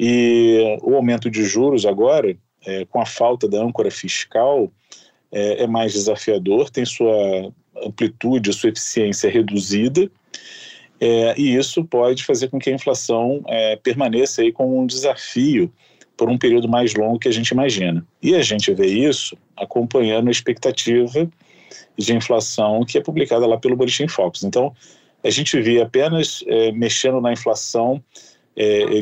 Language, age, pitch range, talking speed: Portuguese, 40-59, 115-135 Hz, 155 wpm